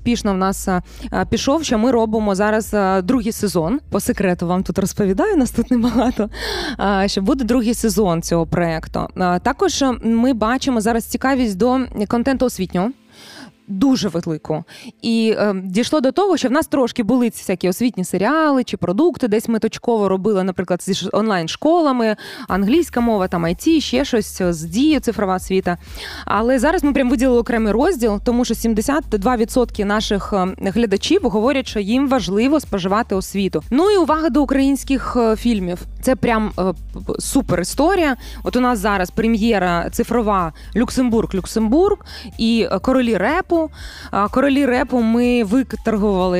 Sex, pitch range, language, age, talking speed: female, 200-260 Hz, Ukrainian, 20-39, 145 wpm